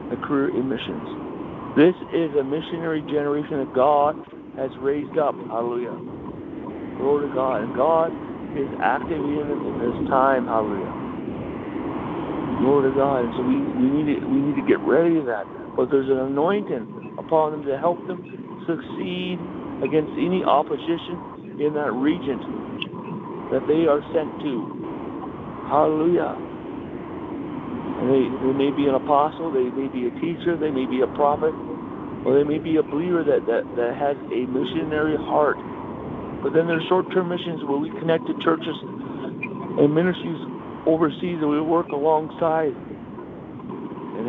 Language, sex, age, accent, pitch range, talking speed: English, male, 60-79, American, 140-180 Hz, 145 wpm